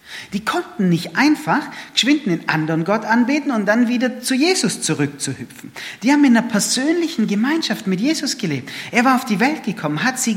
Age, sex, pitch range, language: 40-59, male, 150-245 Hz, German